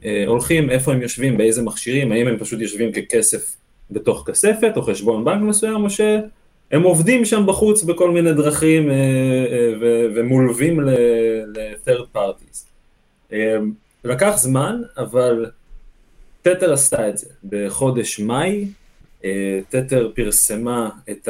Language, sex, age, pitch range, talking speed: Hebrew, male, 30-49, 110-165 Hz, 130 wpm